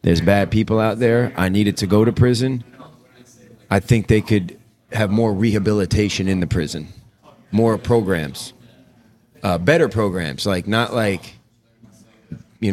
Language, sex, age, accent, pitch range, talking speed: English, male, 30-49, American, 95-115 Hz, 140 wpm